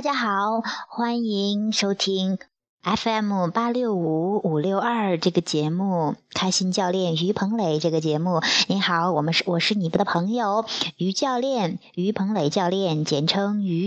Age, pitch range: 20-39, 175-225 Hz